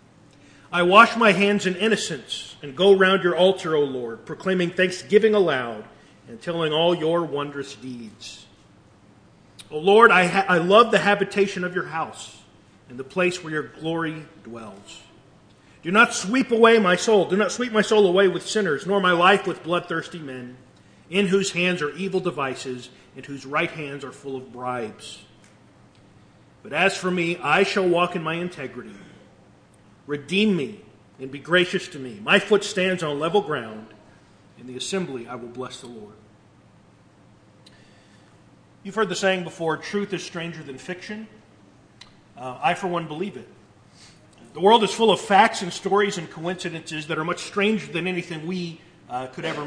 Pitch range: 130-185 Hz